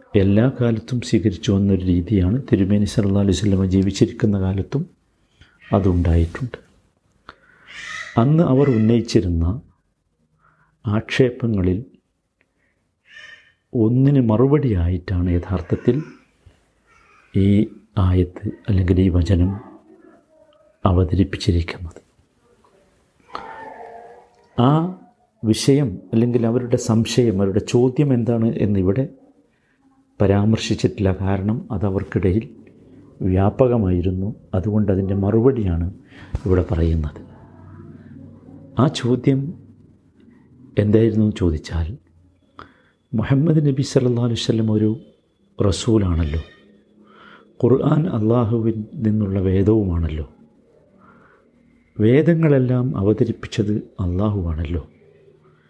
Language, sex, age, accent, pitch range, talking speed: Malayalam, male, 50-69, native, 95-125 Hz, 65 wpm